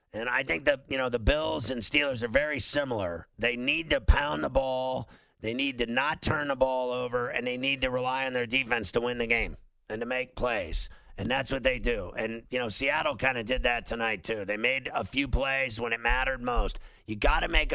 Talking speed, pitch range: 240 wpm, 115-130 Hz